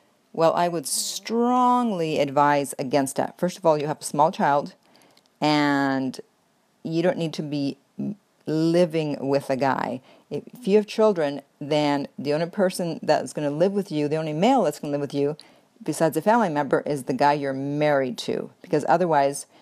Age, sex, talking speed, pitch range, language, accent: 40-59, female, 185 wpm, 150-180 Hz, English, American